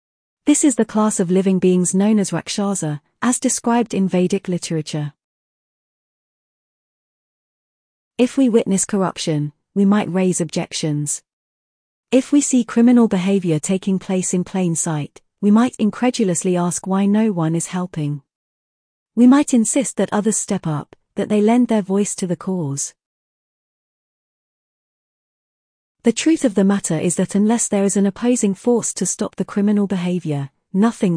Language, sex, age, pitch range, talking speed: English, female, 40-59, 175-230 Hz, 145 wpm